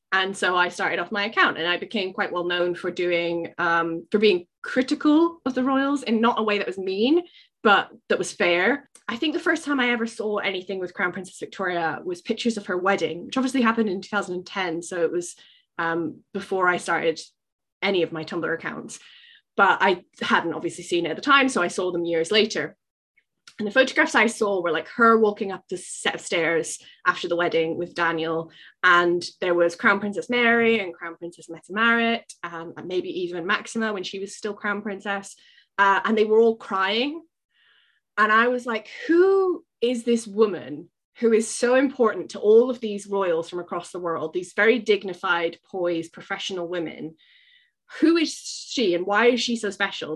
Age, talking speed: 20-39, 195 wpm